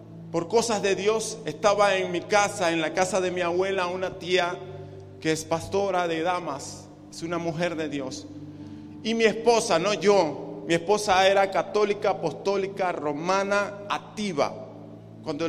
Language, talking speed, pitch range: Spanish, 150 wpm, 150-195 Hz